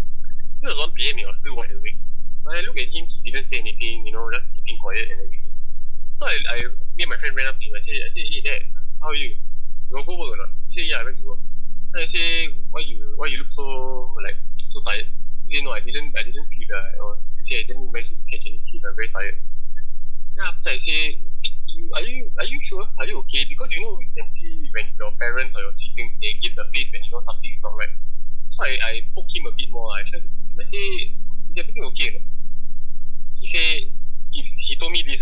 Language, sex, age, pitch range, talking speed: English, male, 20-39, 160-190 Hz, 250 wpm